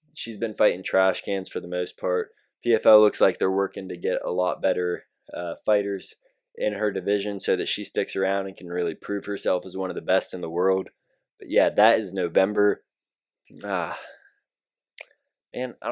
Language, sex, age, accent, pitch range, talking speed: English, male, 20-39, American, 95-140 Hz, 190 wpm